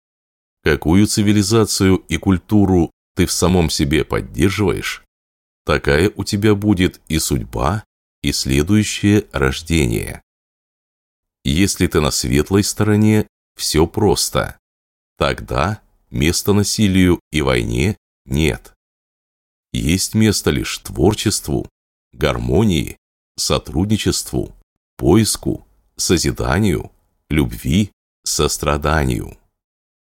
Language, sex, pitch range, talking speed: Russian, male, 70-100 Hz, 80 wpm